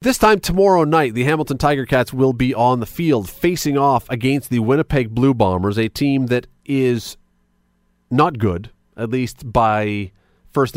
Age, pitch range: 30-49, 110-150 Hz